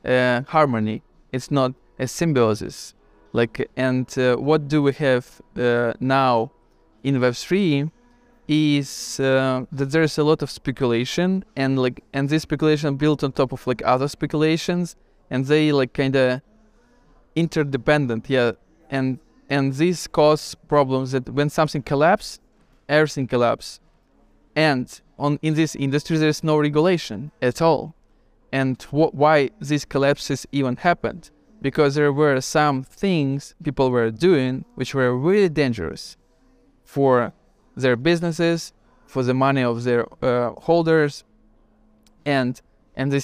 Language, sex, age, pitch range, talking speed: English, male, 20-39, 130-155 Hz, 135 wpm